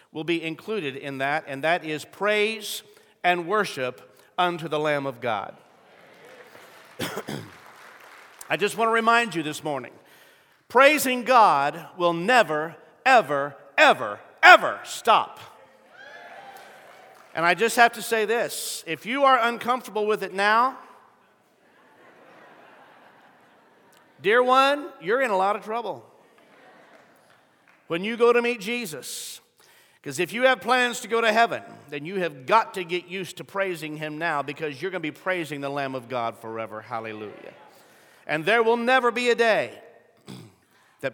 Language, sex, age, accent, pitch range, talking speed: English, male, 50-69, American, 140-225 Hz, 145 wpm